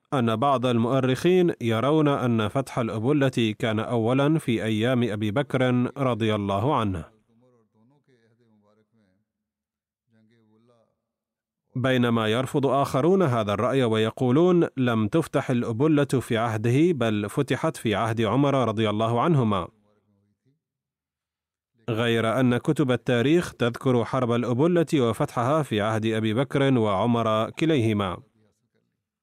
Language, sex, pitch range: Arabic, male, 110-135 Hz